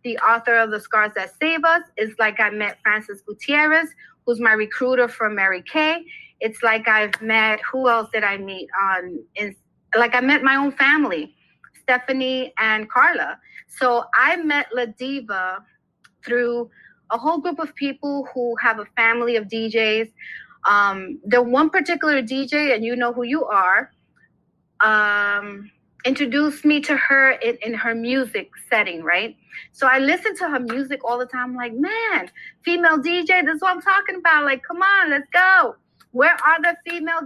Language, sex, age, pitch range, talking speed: English, female, 30-49, 225-305 Hz, 175 wpm